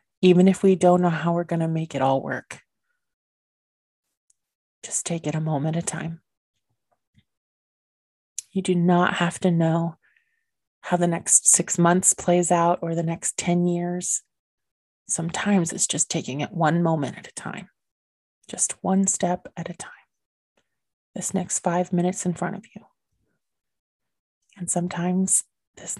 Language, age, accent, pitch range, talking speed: English, 30-49, American, 170-190 Hz, 150 wpm